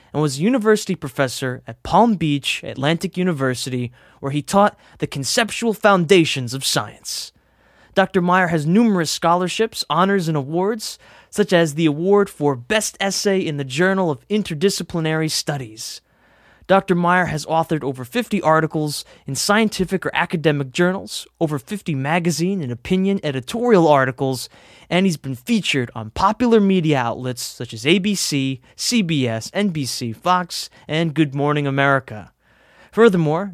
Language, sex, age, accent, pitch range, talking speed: English, male, 20-39, American, 140-195 Hz, 140 wpm